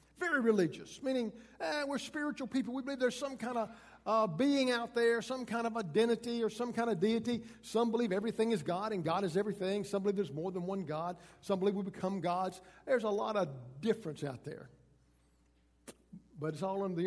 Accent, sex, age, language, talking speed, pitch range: American, male, 50-69, English, 205 wpm, 140-205 Hz